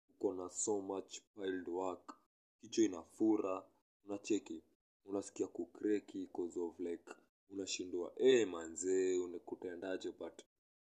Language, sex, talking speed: English, male, 110 wpm